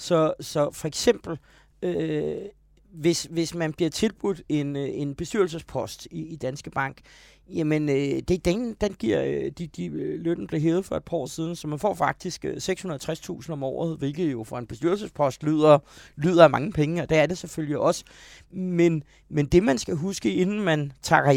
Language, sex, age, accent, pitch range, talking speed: Danish, male, 30-49, native, 140-175 Hz, 185 wpm